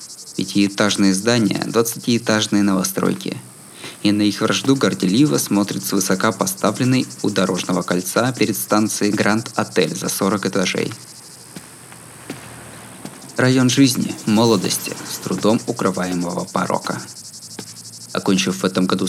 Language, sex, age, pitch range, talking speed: Russian, male, 20-39, 95-125 Hz, 105 wpm